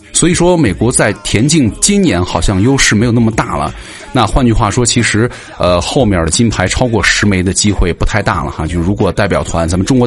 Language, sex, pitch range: Chinese, male, 90-120 Hz